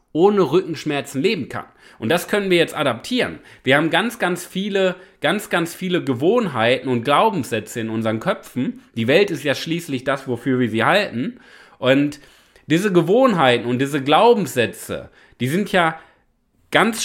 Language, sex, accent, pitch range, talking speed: German, male, German, 130-185 Hz, 155 wpm